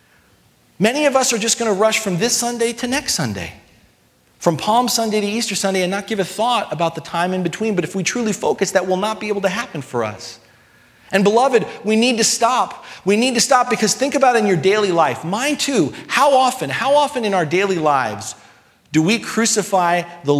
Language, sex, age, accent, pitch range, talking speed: English, male, 40-59, American, 165-225 Hz, 220 wpm